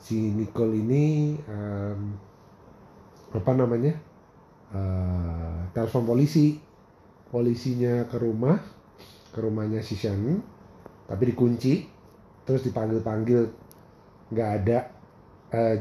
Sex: male